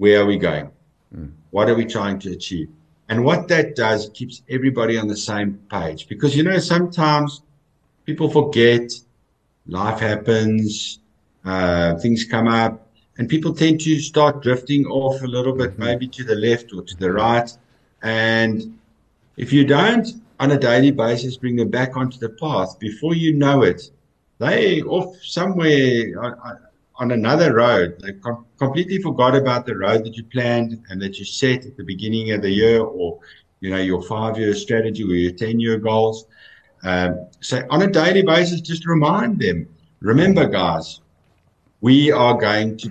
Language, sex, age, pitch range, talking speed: English, male, 60-79, 105-130 Hz, 170 wpm